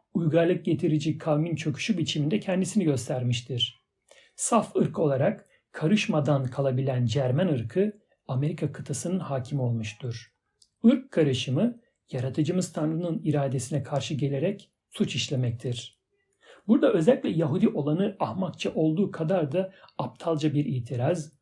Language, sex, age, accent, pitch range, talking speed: Turkish, male, 60-79, native, 130-185 Hz, 105 wpm